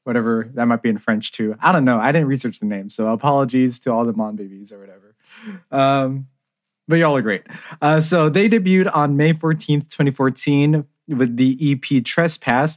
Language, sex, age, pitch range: English, male, 20-39, 115-155 Hz